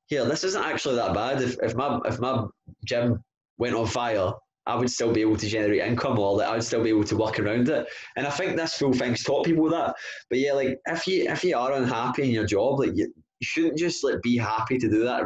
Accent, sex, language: British, male, English